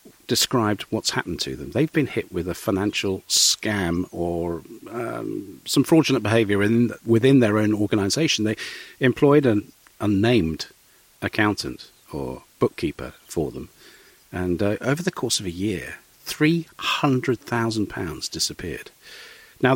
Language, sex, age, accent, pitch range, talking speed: English, male, 40-59, British, 90-120 Hz, 130 wpm